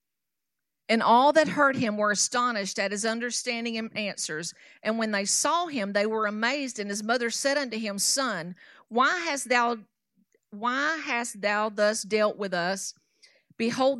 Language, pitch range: English, 205-255 Hz